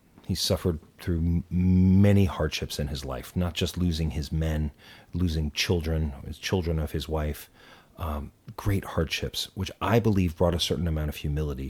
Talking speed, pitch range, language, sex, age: 165 wpm, 80-110 Hz, English, male, 40-59